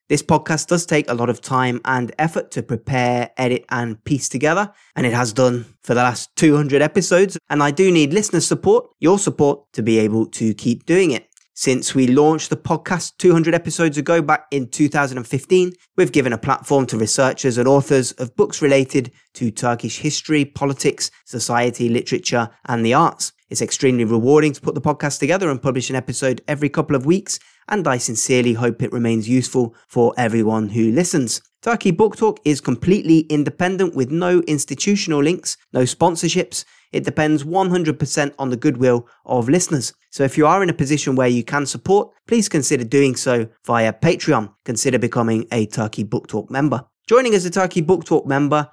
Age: 20-39